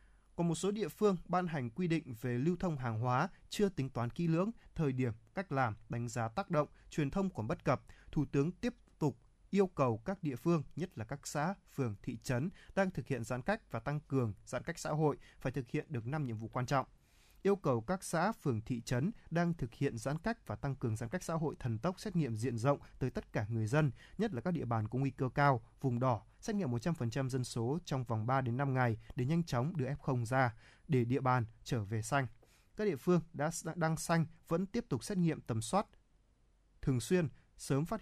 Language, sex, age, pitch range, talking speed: Vietnamese, male, 20-39, 120-170 Hz, 235 wpm